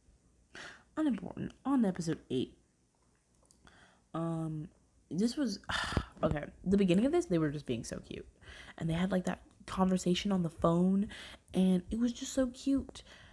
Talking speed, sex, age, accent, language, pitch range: 150 wpm, female, 20-39, American, English, 135-185 Hz